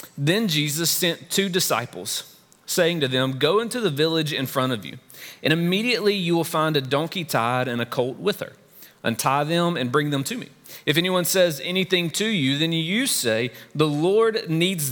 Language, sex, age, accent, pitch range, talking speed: English, male, 30-49, American, 135-185 Hz, 195 wpm